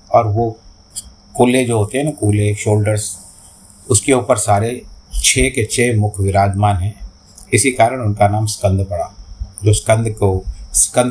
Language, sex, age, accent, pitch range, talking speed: Hindi, male, 50-69, native, 95-115 Hz, 150 wpm